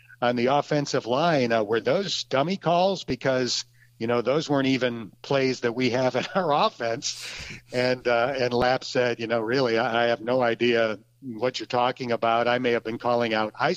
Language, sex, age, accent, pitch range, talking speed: English, male, 50-69, American, 120-150 Hz, 195 wpm